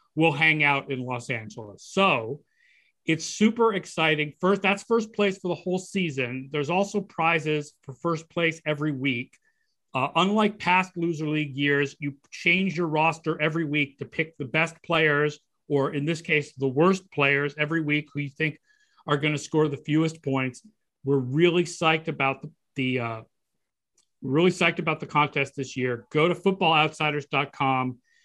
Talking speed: 170 wpm